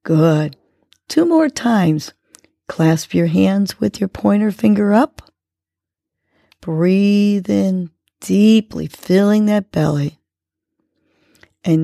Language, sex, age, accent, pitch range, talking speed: English, female, 40-59, American, 145-195 Hz, 95 wpm